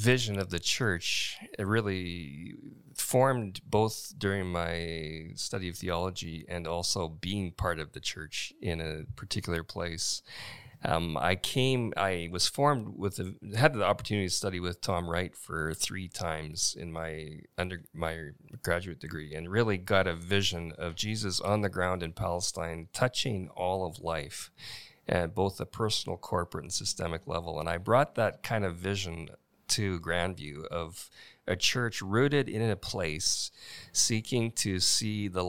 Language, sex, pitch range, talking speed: English, male, 85-100 Hz, 155 wpm